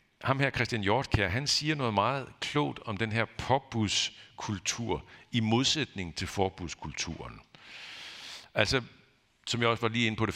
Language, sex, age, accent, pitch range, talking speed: Danish, male, 60-79, native, 90-125 Hz, 150 wpm